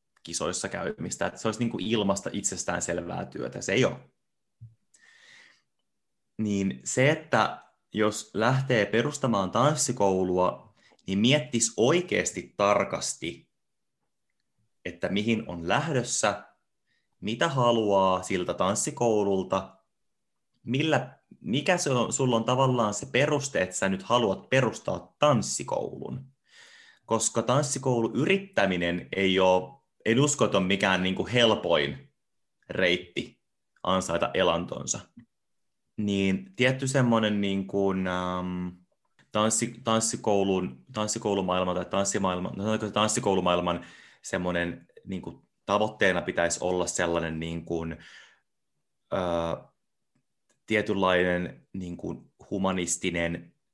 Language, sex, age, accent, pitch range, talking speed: Finnish, male, 20-39, native, 90-115 Hz, 95 wpm